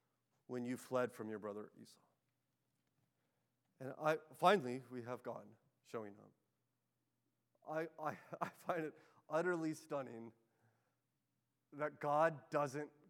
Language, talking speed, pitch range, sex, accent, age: English, 115 wpm, 140-215 Hz, male, American, 30-49